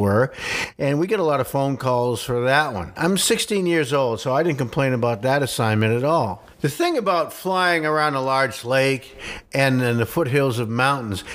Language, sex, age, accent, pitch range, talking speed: English, male, 50-69, American, 130-165 Hz, 200 wpm